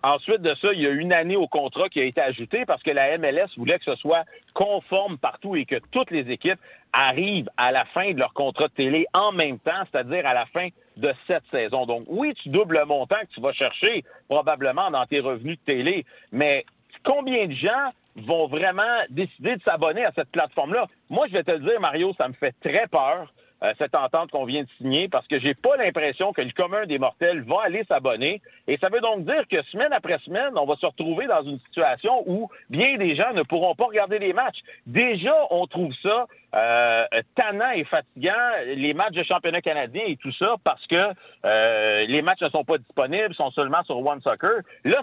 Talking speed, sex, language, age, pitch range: 220 wpm, male, French, 50-69, 145-240 Hz